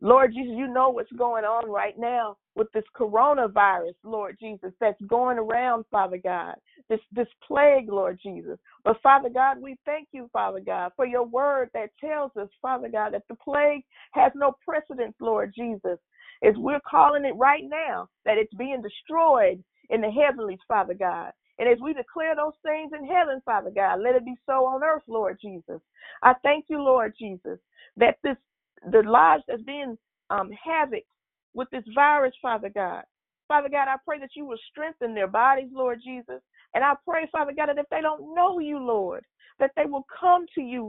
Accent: American